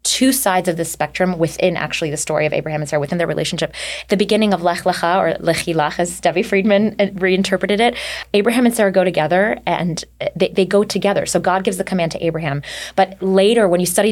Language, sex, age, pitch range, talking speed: English, female, 20-39, 160-195 Hz, 215 wpm